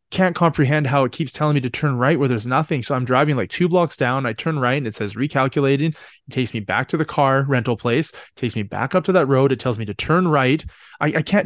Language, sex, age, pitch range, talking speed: English, male, 20-39, 125-160 Hz, 280 wpm